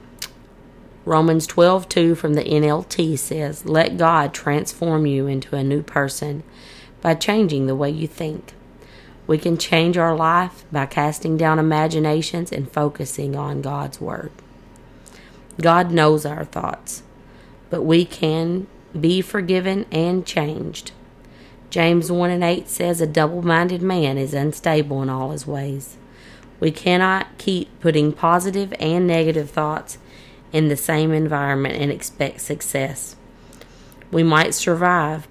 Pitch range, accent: 145-170 Hz, American